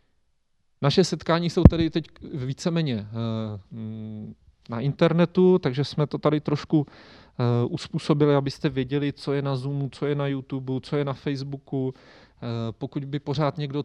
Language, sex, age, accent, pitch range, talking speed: Czech, male, 40-59, native, 110-140 Hz, 140 wpm